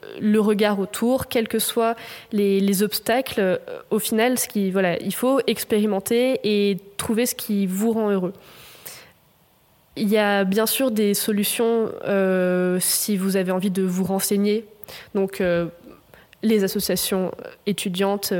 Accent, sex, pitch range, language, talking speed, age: French, female, 195-225 Hz, French, 135 wpm, 20-39